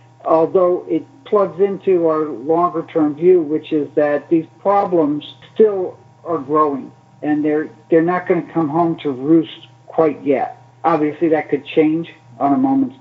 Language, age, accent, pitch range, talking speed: English, 60-79, American, 145-175 Hz, 160 wpm